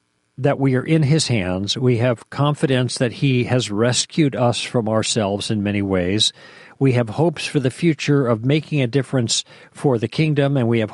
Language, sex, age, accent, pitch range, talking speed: English, male, 50-69, American, 110-145 Hz, 190 wpm